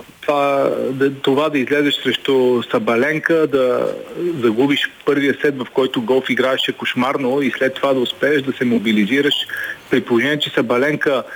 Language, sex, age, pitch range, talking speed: Bulgarian, male, 40-59, 125-150 Hz, 150 wpm